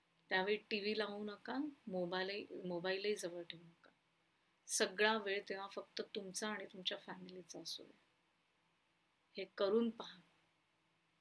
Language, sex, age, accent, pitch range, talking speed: Marathi, female, 30-49, native, 190-215 Hz, 120 wpm